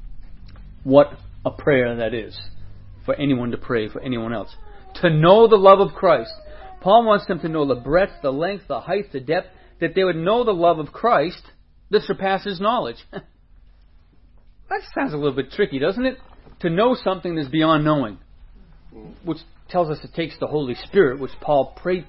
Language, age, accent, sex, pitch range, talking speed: English, 40-59, American, male, 135-205 Hz, 180 wpm